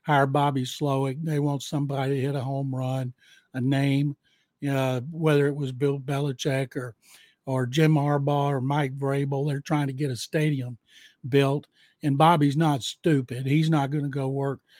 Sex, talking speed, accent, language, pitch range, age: male, 180 wpm, American, English, 140-165 Hz, 60-79